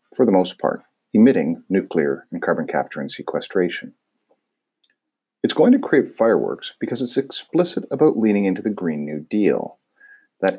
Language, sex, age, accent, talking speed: English, male, 50-69, American, 155 wpm